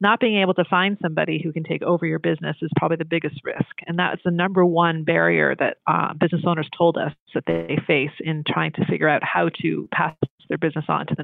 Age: 40-59